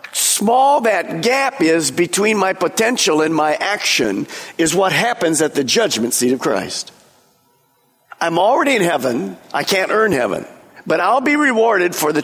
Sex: male